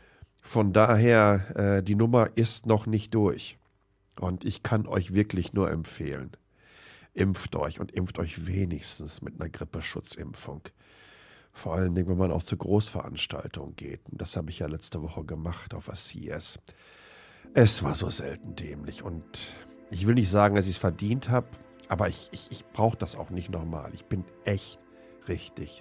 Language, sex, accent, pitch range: German, male, German, 90-110 Hz